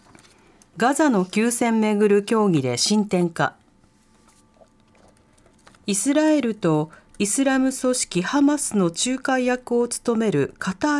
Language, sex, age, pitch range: Japanese, female, 40-59, 170-265 Hz